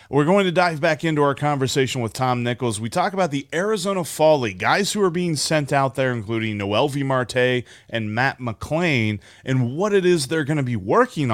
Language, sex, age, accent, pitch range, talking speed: English, male, 30-49, American, 120-170 Hz, 210 wpm